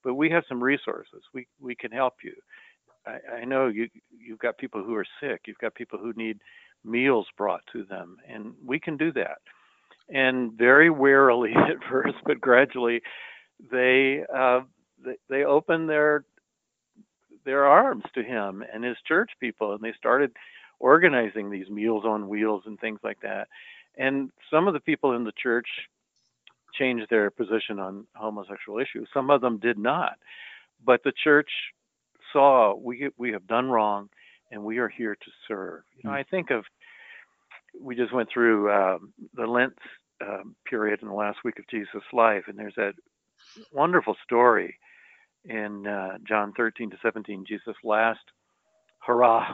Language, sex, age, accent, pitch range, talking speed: English, male, 60-79, American, 110-135 Hz, 165 wpm